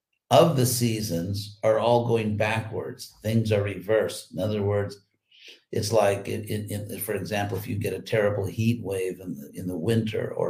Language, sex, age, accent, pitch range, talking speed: English, male, 50-69, American, 105-120 Hz, 190 wpm